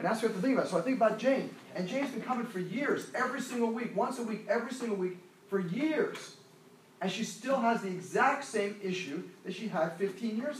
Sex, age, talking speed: male, 40-59, 245 wpm